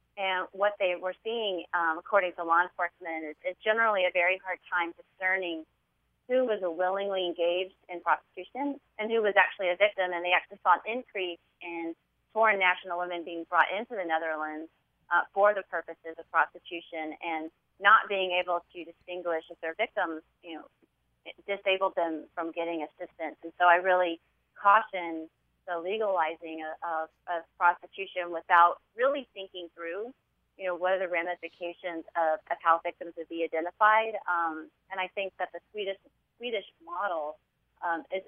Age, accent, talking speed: 30-49, American, 165 wpm